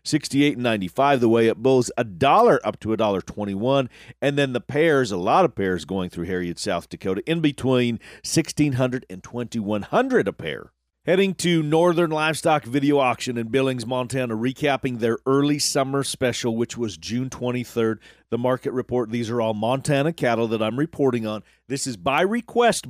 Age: 40-59